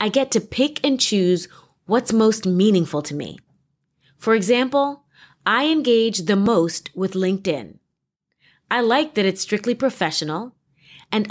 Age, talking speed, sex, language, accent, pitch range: 30-49, 140 wpm, female, English, American, 175-245 Hz